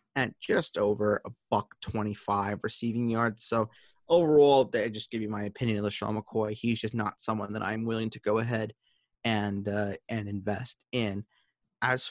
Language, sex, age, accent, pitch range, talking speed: English, male, 30-49, American, 110-170 Hz, 185 wpm